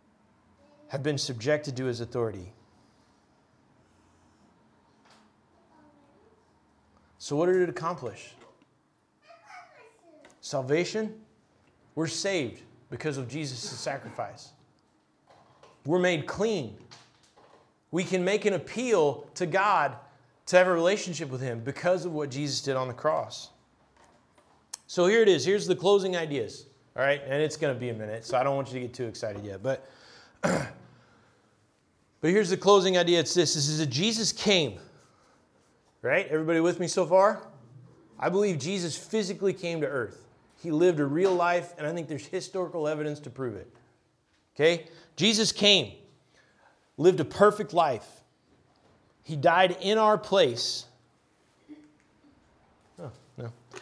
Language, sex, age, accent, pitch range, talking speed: English, male, 30-49, American, 140-190 Hz, 135 wpm